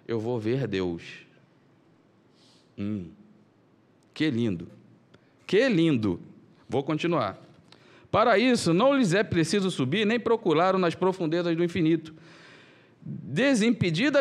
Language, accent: Portuguese, Brazilian